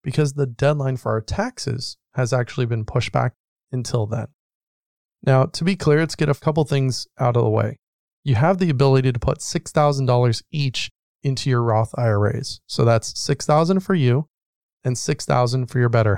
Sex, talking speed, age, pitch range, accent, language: male, 180 wpm, 30-49, 120-145 Hz, American, English